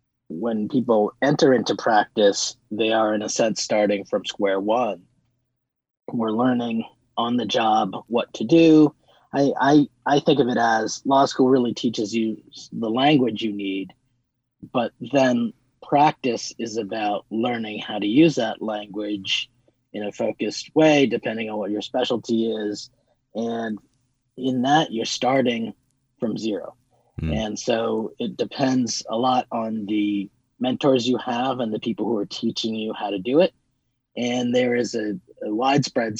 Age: 30-49